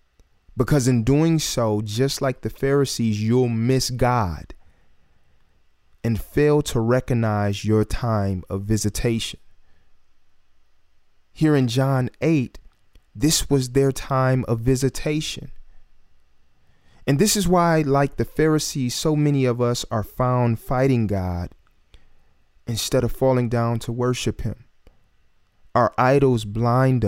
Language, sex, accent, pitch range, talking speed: English, male, American, 105-135 Hz, 120 wpm